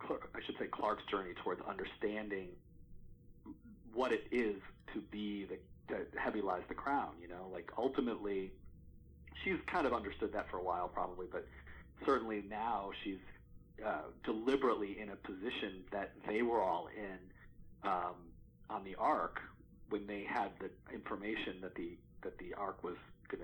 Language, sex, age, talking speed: English, male, 40-59, 155 wpm